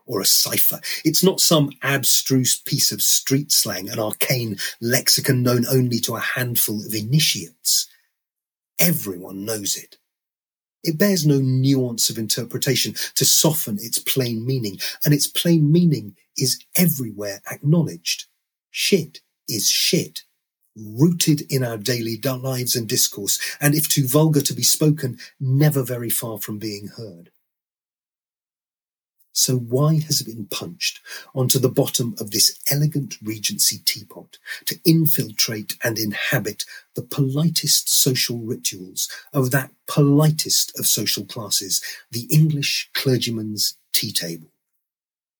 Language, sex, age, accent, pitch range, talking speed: English, male, 30-49, British, 115-150 Hz, 130 wpm